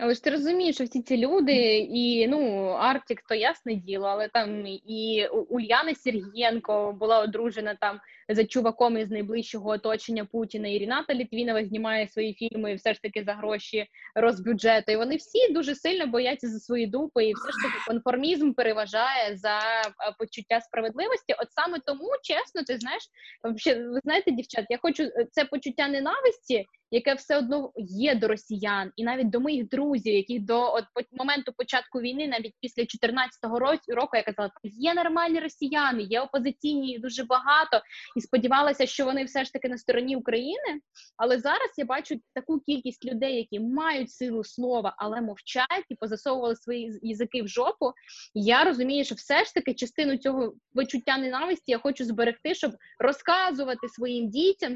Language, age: Ukrainian, 20-39